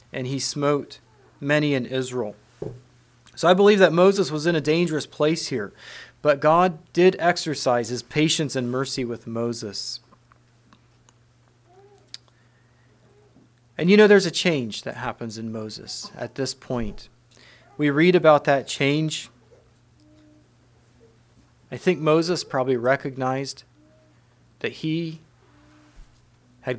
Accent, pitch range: American, 120-155 Hz